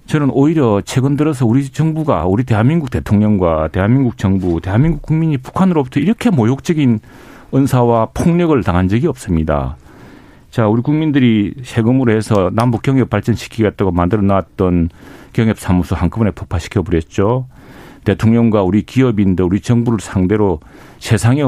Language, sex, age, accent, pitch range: Korean, male, 40-59, native, 95-140 Hz